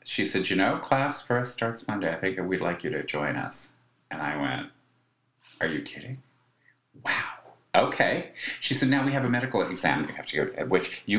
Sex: male